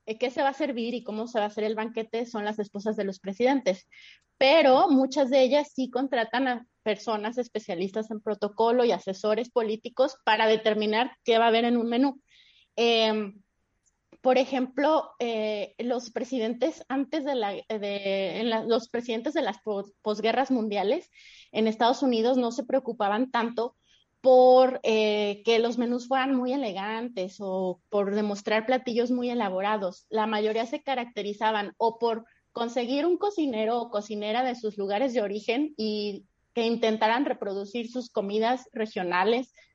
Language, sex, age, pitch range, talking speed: Spanish, female, 20-39, 215-260 Hz, 160 wpm